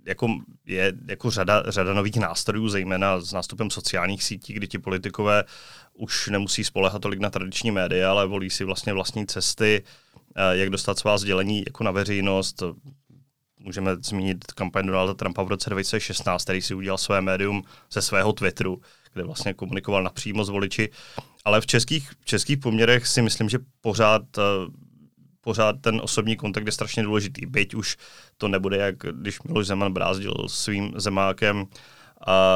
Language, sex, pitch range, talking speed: Czech, male, 95-115 Hz, 160 wpm